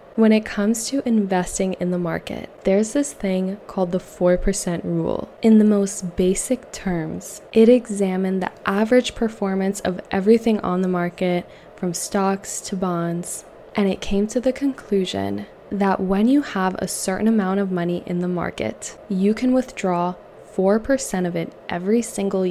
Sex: female